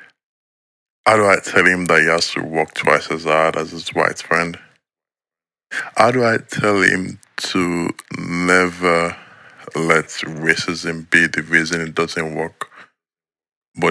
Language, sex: English, male